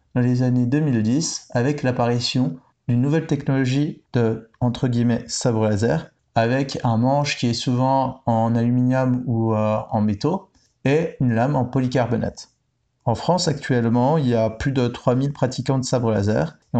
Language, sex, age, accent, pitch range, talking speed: French, male, 30-49, French, 115-135 Hz, 155 wpm